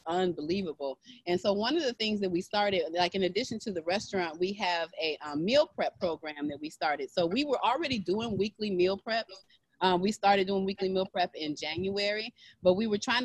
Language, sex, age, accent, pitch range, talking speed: English, female, 30-49, American, 160-195 Hz, 215 wpm